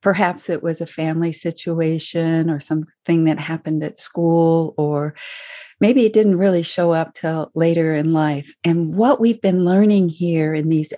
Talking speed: 170 wpm